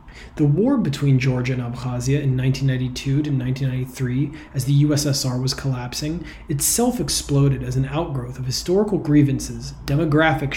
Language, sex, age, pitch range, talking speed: English, male, 30-49, 130-155 Hz, 135 wpm